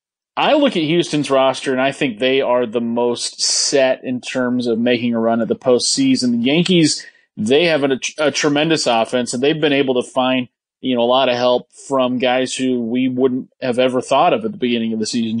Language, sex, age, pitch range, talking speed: English, male, 30-49, 125-145 Hz, 220 wpm